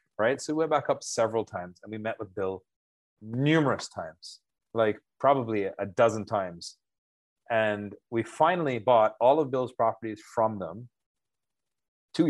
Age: 30-49